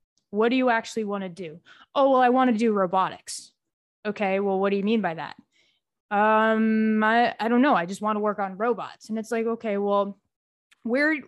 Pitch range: 190-225 Hz